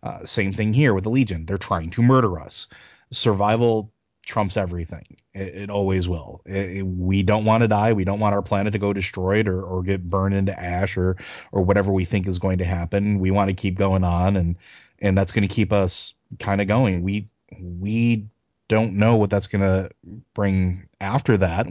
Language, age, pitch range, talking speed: English, 30-49, 95-110 Hz, 205 wpm